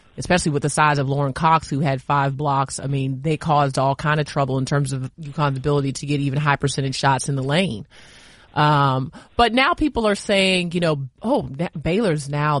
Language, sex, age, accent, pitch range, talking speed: English, male, 30-49, American, 140-170 Hz, 215 wpm